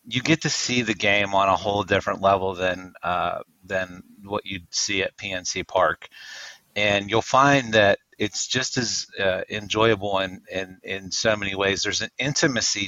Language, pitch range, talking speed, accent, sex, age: English, 100-140 Hz, 175 wpm, American, male, 30-49